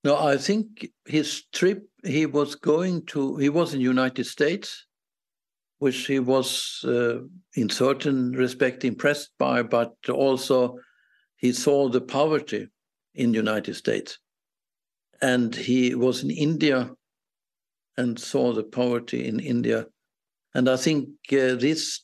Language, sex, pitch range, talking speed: English, male, 125-155 Hz, 135 wpm